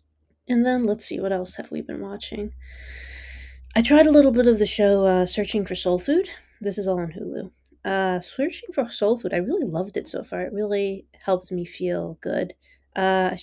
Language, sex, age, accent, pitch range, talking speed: English, female, 20-39, American, 180-215 Hz, 210 wpm